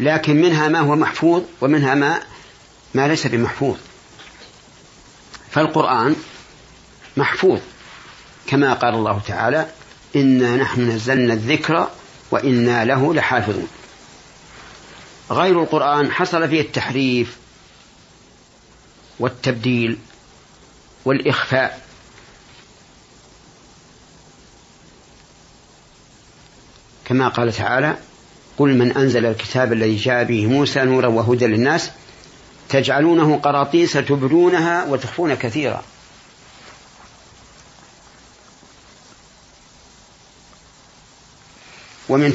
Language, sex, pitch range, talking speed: Arabic, male, 115-140 Hz, 70 wpm